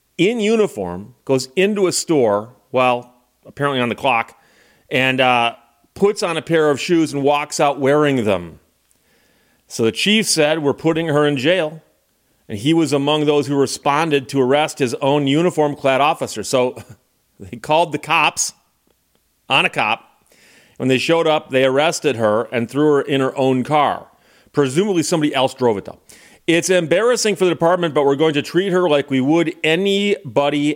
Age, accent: 40-59, American